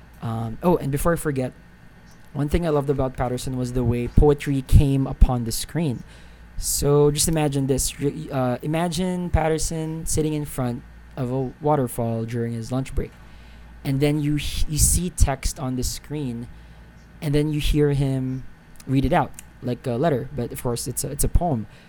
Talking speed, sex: 185 wpm, male